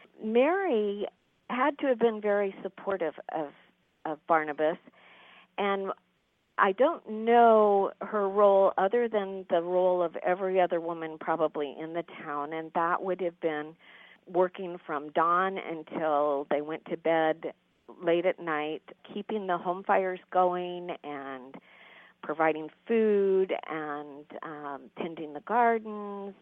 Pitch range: 155-205 Hz